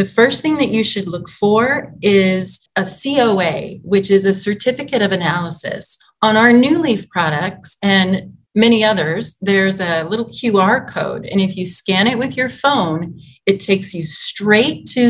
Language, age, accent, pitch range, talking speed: English, 30-49, American, 170-210 Hz, 170 wpm